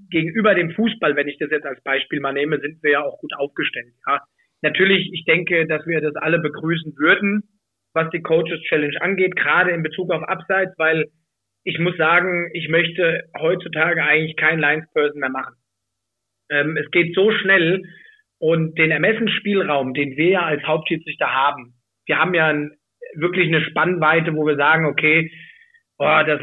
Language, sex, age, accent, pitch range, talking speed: German, male, 30-49, German, 145-180 Hz, 170 wpm